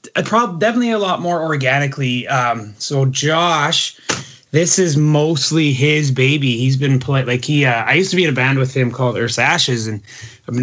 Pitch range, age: 125-155 Hz, 20-39